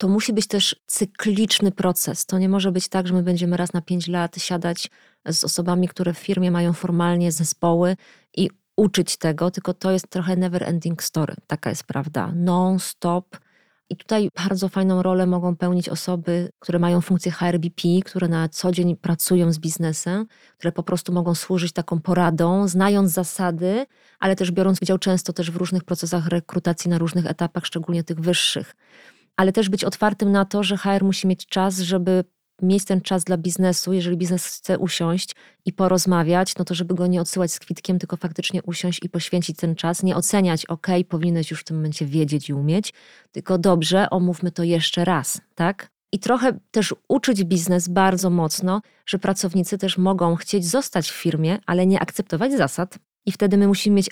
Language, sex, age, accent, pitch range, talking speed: Polish, female, 30-49, native, 175-195 Hz, 185 wpm